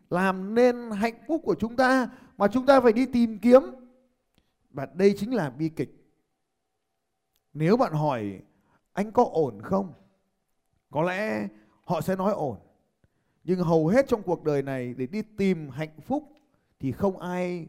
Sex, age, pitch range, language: male, 20-39, 165-250 Hz, Vietnamese